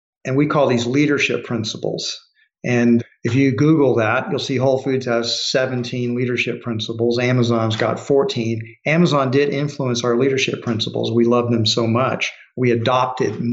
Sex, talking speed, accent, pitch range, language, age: male, 155 wpm, American, 120-140 Hz, English, 50-69